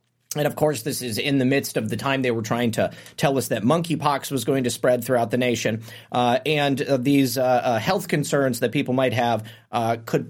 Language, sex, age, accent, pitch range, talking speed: English, male, 30-49, American, 130-175 Hz, 235 wpm